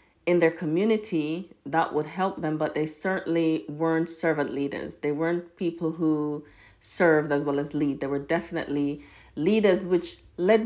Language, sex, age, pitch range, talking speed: English, female, 40-59, 150-185 Hz, 160 wpm